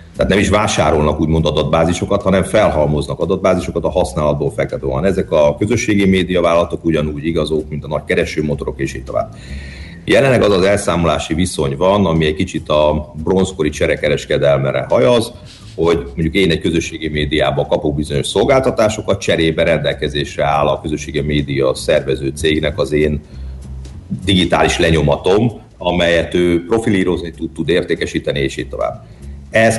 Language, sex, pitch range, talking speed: Hungarian, male, 75-95 Hz, 135 wpm